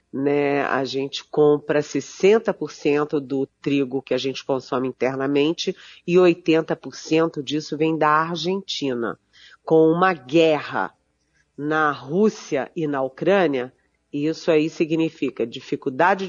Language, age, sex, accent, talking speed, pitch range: Portuguese, 40-59, female, Brazilian, 110 wpm, 145-190 Hz